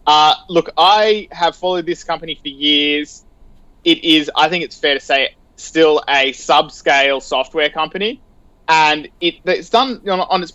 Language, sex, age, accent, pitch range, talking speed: English, male, 20-39, Australian, 135-165 Hz, 160 wpm